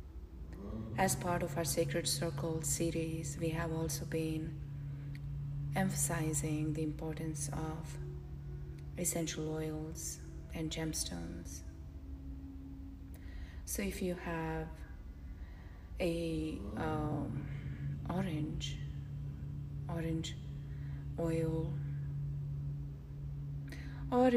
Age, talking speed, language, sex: 30-49, 70 wpm, English, female